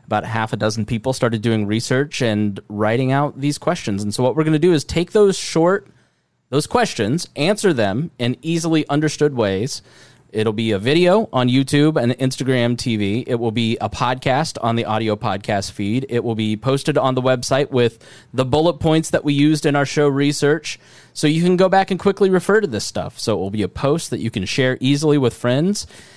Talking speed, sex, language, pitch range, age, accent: 215 wpm, male, English, 115-150 Hz, 20-39, American